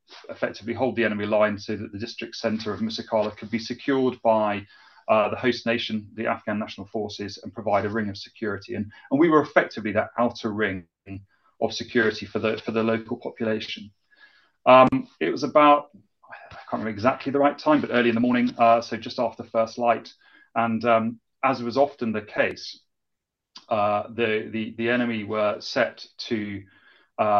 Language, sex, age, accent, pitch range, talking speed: English, male, 30-49, British, 105-120 Hz, 185 wpm